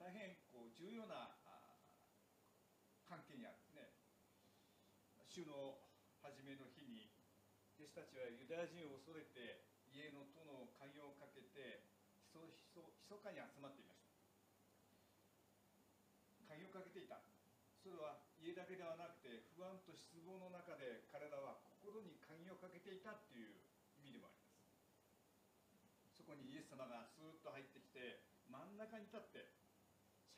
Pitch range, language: 125-200 Hz, Japanese